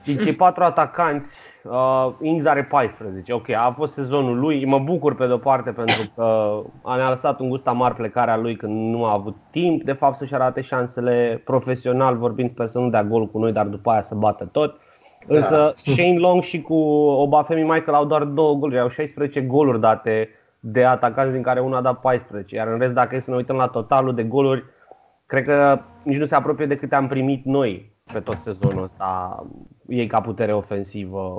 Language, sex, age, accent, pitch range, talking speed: Romanian, male, 20-39, native, 120-145 Hz, 205 wpm